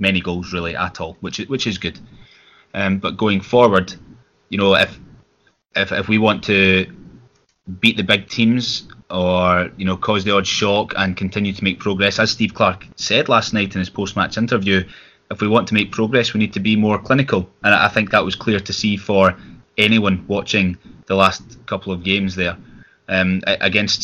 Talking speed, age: 195 wpm, 20-39